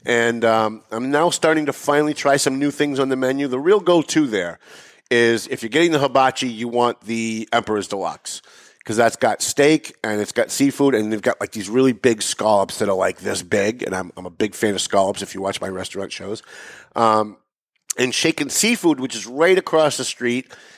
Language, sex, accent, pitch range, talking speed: English, male, American, 115-150 Hz, 215 wpm